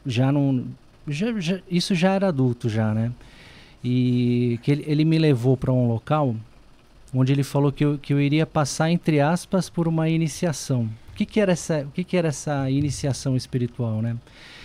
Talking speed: 190 wpm